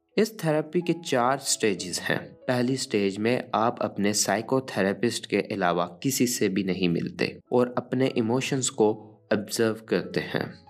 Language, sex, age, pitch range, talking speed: Urdu, male, 20-39, 105-140 Hz, 150 wpm